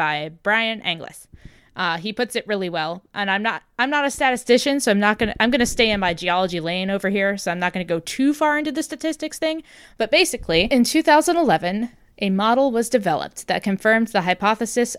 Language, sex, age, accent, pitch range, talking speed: English, female, 20-39, American, 180-245 Hz, 220 wpm